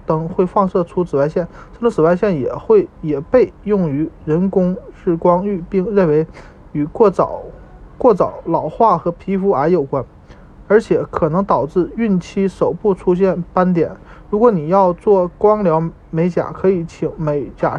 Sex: male